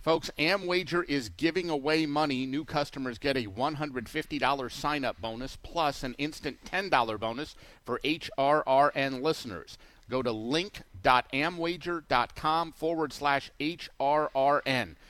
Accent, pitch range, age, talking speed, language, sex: American, 125-155 Hz, 50-69, 105 wpm, English, male